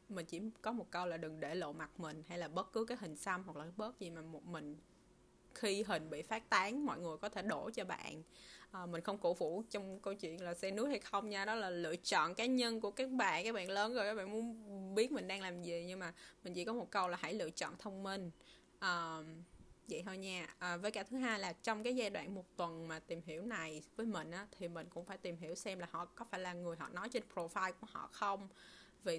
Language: Vietnamese